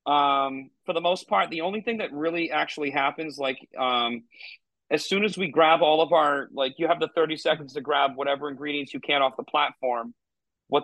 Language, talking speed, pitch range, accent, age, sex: English, 210 wpm, 140-170 Hz, American, 30-49, male